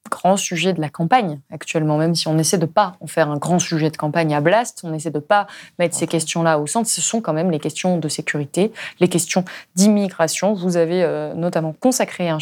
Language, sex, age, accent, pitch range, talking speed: French, female, 20-39, French, 165-225 Hz, 225 wpm